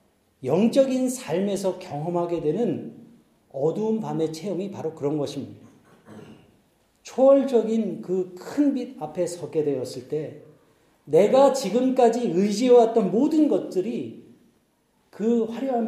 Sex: male